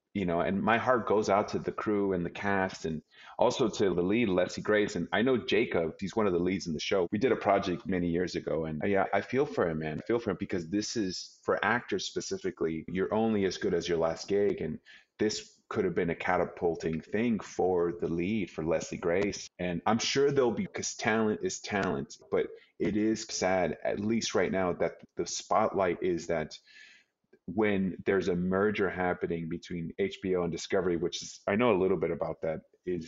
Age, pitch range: 30-49, 85-105 Hz